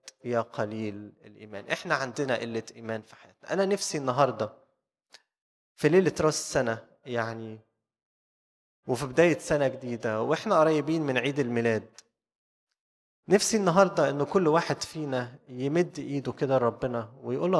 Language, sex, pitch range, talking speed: Arabic, male, 120-170 Hz, 125 wpm